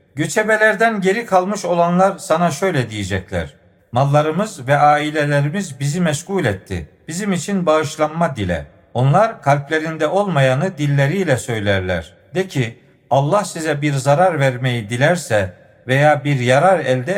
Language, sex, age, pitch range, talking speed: Turkish, male, 50-69, 130-175 Hz, 120 wpm